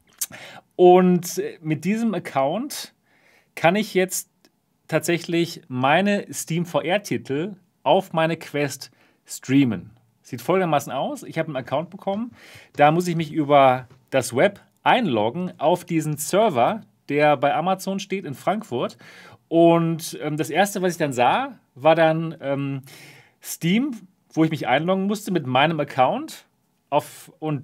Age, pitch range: 40-59, 145-185 Hz